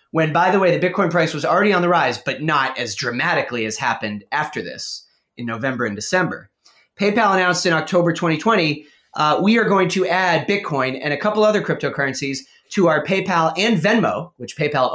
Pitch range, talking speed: 145-185 Hz, 195 wpm